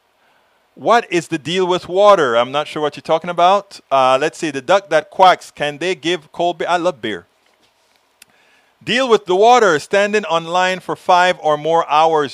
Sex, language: male, English